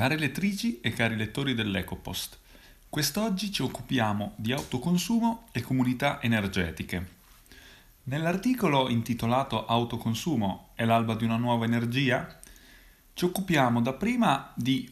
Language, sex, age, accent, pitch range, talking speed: Italian, male, 30-49, native, 95-135 Hz, 110 wpm